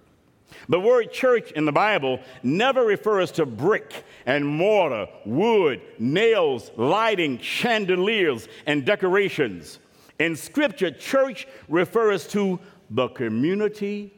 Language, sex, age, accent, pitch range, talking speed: English, male, 60-79, American, 160-225 Hz, 105 wpm